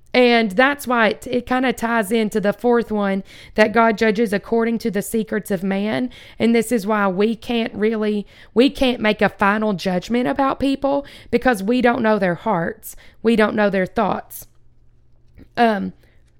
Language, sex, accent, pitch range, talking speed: English, female, American, 200-235 Hz, 175 wpm